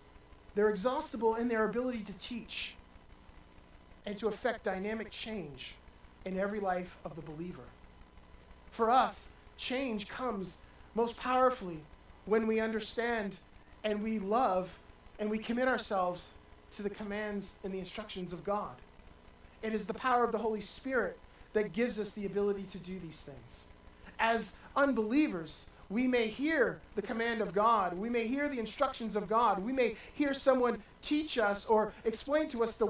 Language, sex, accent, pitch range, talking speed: English, male, American, 190-230 Hz, 155 wpm